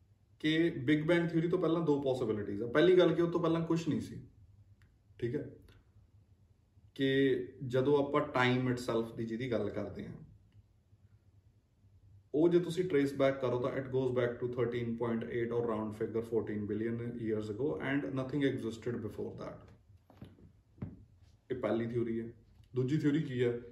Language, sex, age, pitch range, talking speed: Punjabi, male, 20-39, 105-150 Hz, 155 wpm